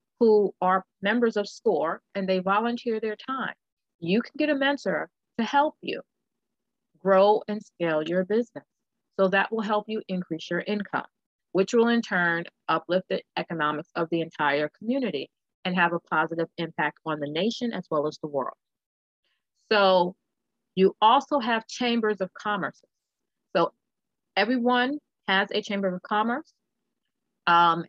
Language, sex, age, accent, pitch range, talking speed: English, female, 30-49, American, 170-230 Hz, 150 wpm